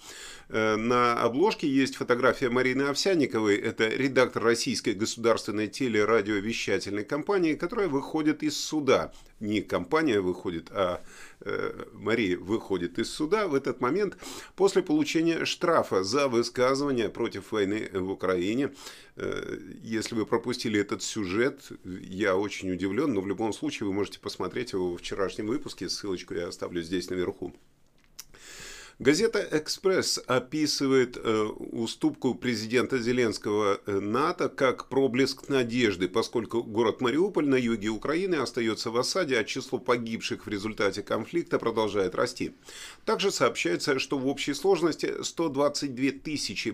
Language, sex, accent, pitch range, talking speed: Russian, male, native, 110-150 Hz, 125 wpm